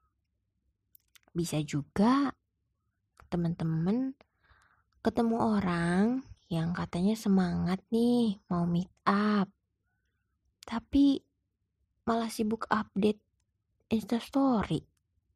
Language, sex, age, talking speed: Indonesian, female, 20-39, 65 wpm